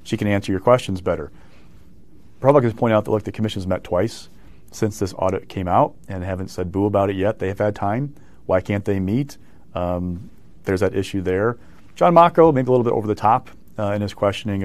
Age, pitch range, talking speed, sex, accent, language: 40-59, 95-115 Hz, 215 wpm, male, American, English